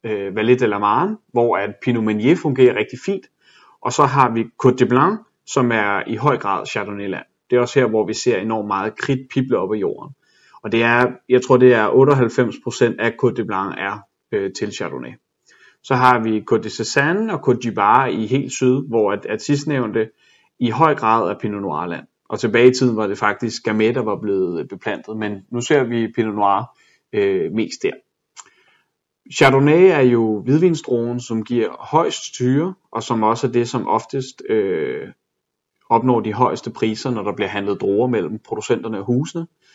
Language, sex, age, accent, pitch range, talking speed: Danish, male, 30-49, native, 110-140 Hz, 185 wpm